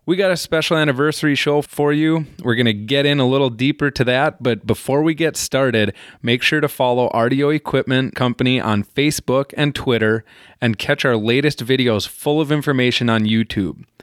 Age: 20-39